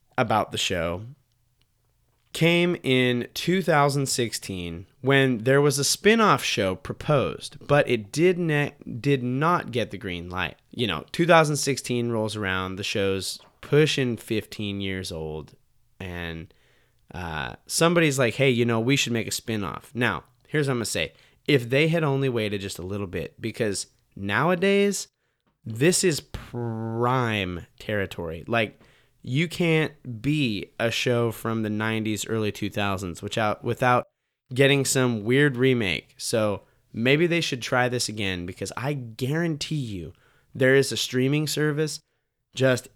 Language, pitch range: English, 105-140 Hz